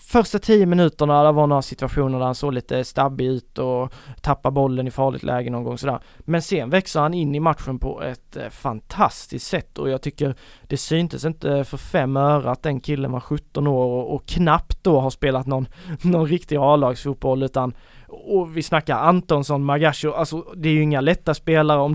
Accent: native